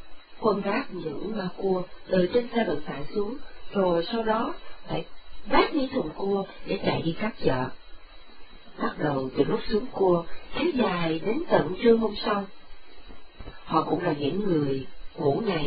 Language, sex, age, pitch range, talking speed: Vietnamese, female, 50-69, 155-220 Hz, 140 wpm